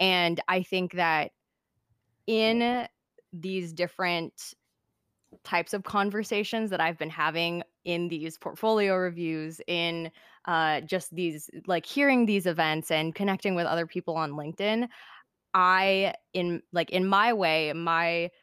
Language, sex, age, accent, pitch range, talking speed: English, female, 20-39, American, 160-185 Hz, 130 wpm